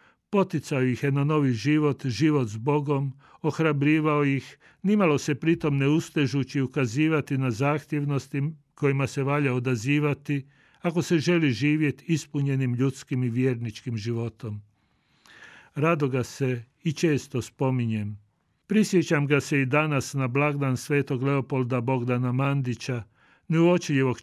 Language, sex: Croatian, male